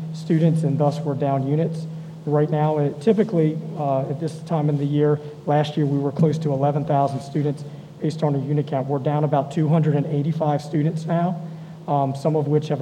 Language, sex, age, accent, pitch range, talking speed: English, male, 40-59, American, 145-160 Hz, 190 wpm